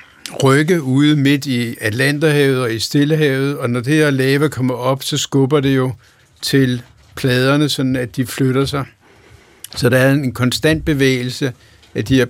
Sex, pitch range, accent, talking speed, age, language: male, 115-135 Hz, native, 170 wpm, 70-89, Danish